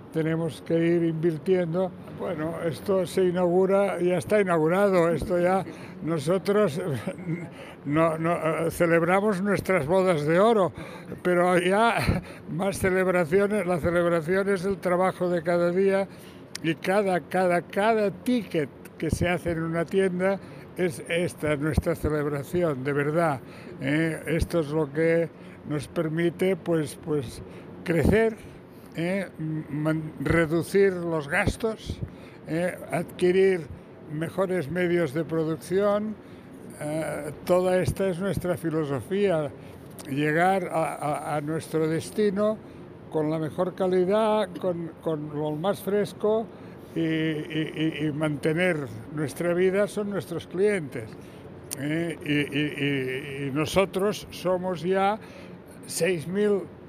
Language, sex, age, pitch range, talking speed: Spanish, male, 60-79, 155-190 Hz, 115 wpm